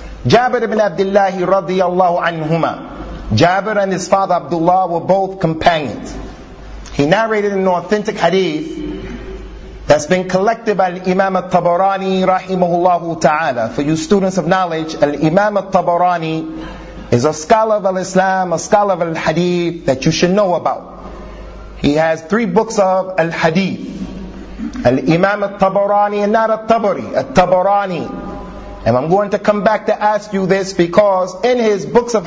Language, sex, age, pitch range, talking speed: English, male, 50-69, 175-215 Hz, 140 wpm